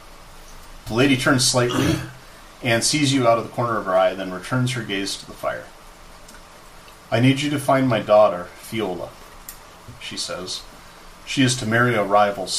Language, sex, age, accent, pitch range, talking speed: English, male, 30-49, American, 95-125 Hz, 175 wpm